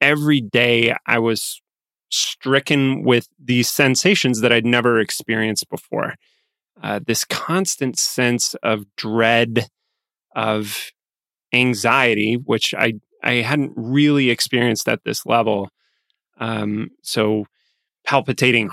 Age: 30-49